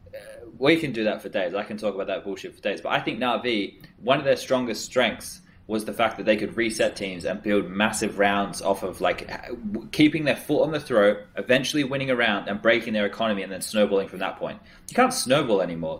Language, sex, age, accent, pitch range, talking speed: English, male, 20-39, Australian, 100-125 Hz, 235 wpm